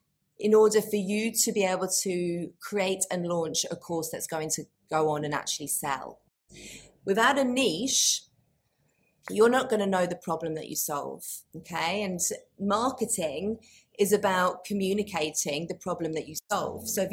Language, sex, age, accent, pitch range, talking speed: English, female, 30-49, British, 170-210 Hz, 160 wpm